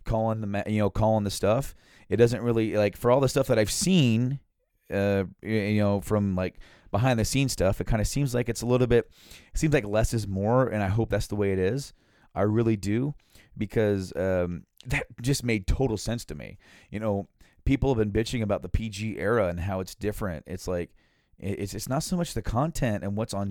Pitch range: 95-115 Hz